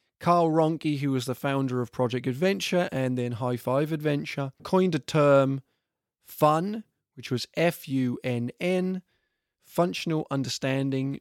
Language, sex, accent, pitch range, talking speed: English, male, British, 130-170 Hz, 125 wpm